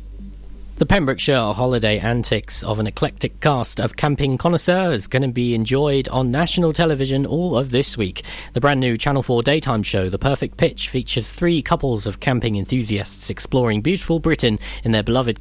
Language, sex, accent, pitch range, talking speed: English, male, British, 110-150 Hz, 170 wpm